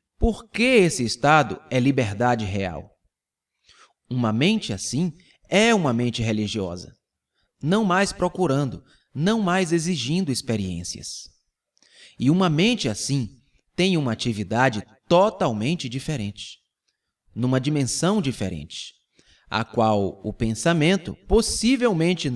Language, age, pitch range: Portuguese, 30-49, 110-170 Hz